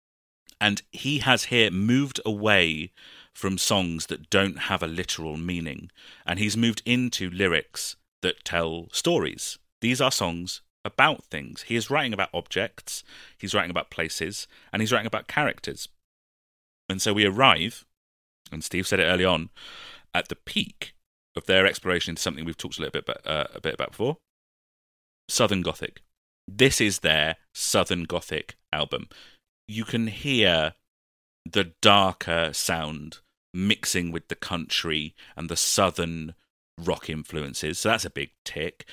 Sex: male